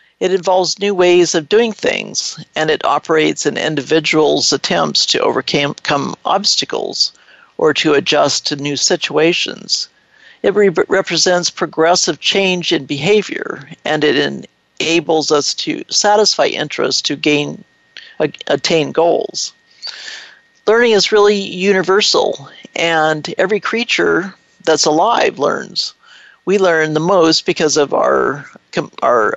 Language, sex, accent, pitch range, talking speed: English, male, American, 155-195 Hz, 120 wpm